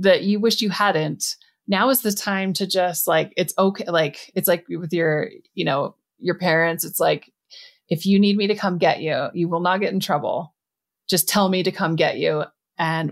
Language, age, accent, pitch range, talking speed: English, 20-39, American, 160-195 Hz, 215 wpm